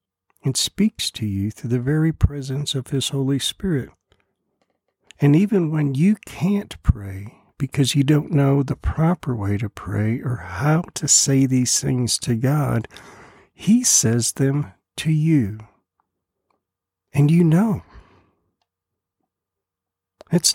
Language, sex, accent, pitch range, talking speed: English, male, American, 95-145 Hz, 130 wpm